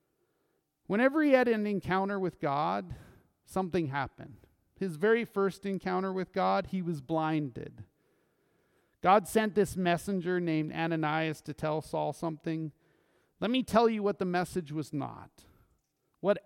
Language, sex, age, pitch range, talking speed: English, male, 40-59, 160-205 Hz, 140 wpm